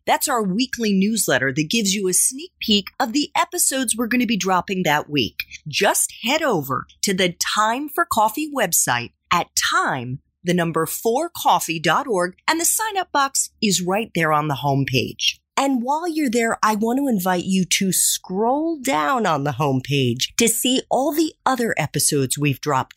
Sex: female